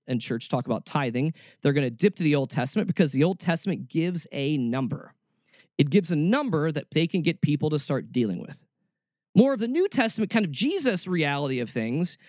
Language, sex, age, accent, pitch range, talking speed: English, male, 40-59, American, 140-215 Hz, 215 wpm